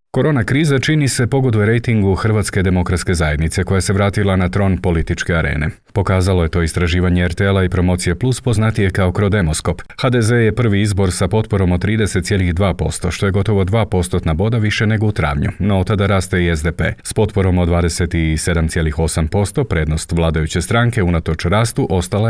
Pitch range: 85-105 Hz